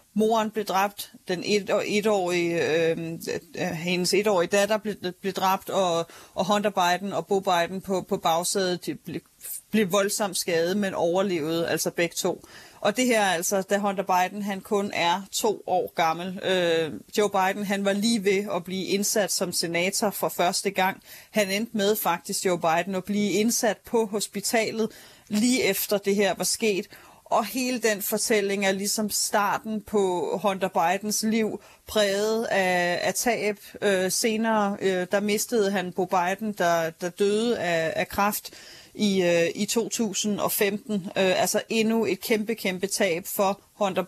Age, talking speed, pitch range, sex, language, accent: 30-49, 150 wpm, 185-215 Hz, female, Danish, native